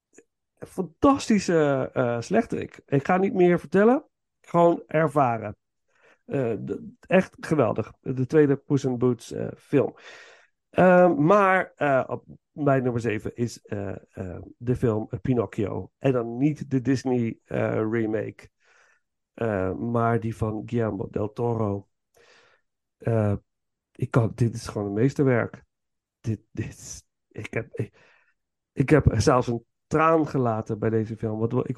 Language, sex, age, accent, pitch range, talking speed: Dutch, male, 50-69, Dutch, 115-140 Hz, 140 wpm